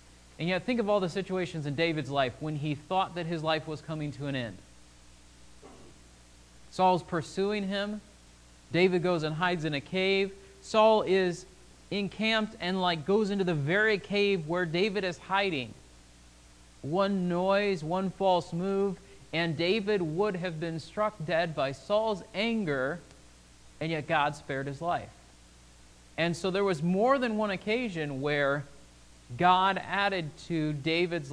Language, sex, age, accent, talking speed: English, male, 30-49, American, 150 wpm